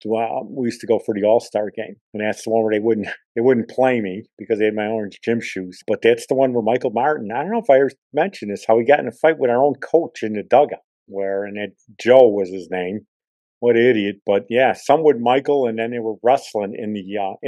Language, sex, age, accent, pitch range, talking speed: English, male, 50-69, American, 110-140 Hz, 265 wpm